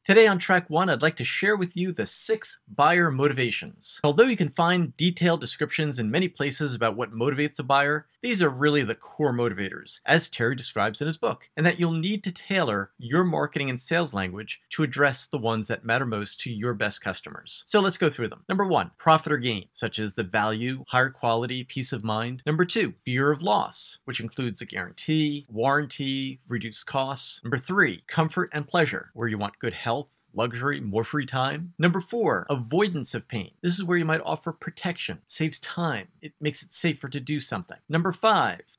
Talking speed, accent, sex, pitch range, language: 200 wpm, American, male, 115-165 Hz, English